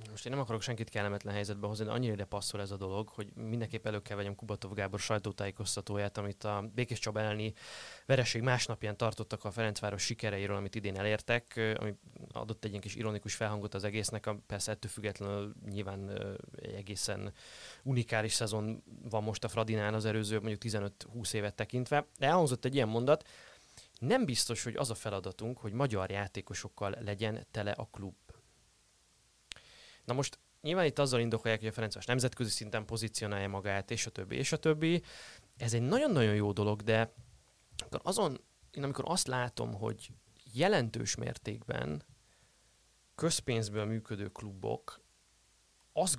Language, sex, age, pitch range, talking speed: Hungarian, male, 20-39, 105-120 Hz, 155 wpm